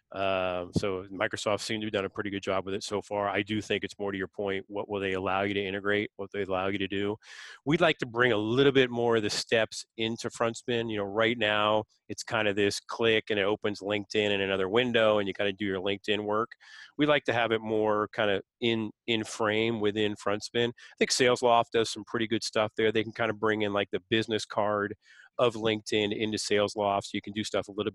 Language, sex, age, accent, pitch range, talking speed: English, male, 30-49, American, 100-115 Hz, 250 wpm